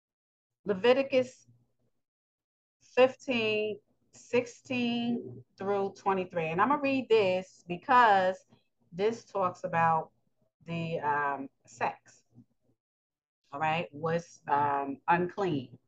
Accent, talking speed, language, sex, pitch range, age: American, 85 wpm, English, female, 140-210 Hz, 30-49